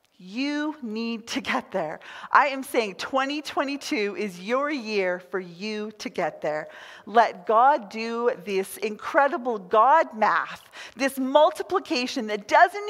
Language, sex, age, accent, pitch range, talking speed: English, female, 40-59, American, 210-305 Hz, 130 wpm